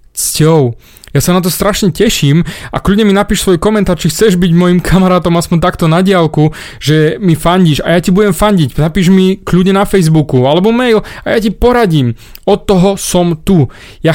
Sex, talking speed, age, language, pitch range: male, 195 wpm, 30-49, Slovak, 140-185 Hz